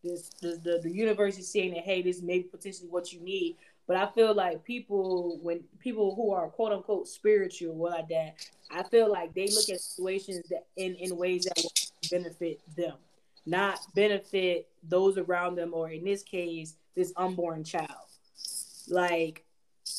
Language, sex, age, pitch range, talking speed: English, female, 10-29, 170-200 Hz, 175 wpm